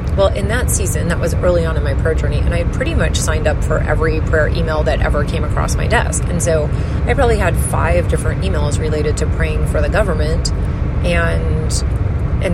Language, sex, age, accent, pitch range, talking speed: English, female, 30-49, American, 75-85 Hz, 210 wpm